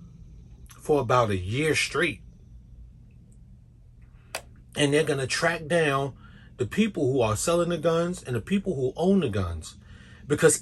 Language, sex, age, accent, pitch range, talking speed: English, male, 30-49, American, 100-150 Hz, 135 wpm